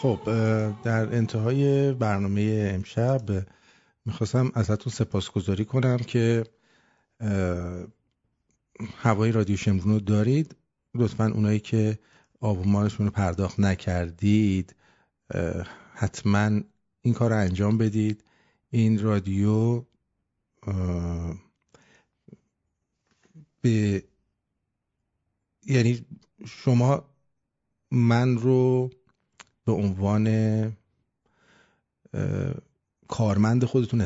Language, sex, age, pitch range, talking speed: English, male, 50-69, 100-120 Hz, 65 wpm